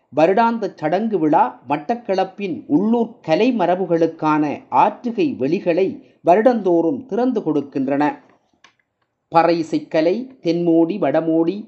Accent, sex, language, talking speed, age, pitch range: native, male, Tamil, 70 wpm, 30-49, 165-235 Hz